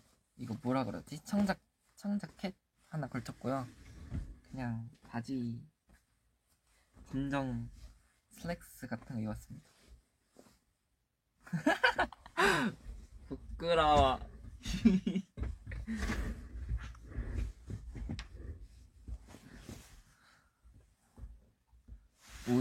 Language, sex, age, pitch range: Korean, male, 20-39, 110-150 Hz